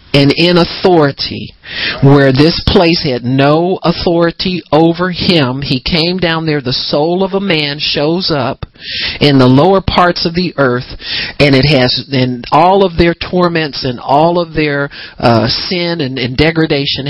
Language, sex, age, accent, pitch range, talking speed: English, male, 50-69, American, 140-185 Hz, 160 wpm